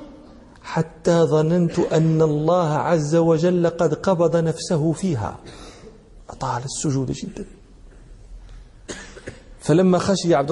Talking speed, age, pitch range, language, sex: 90 wpm, 40-59, 155-185 Hz, Danish, male